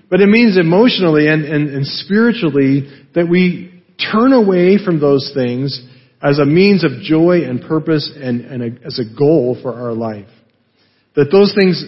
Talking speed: 170 wpm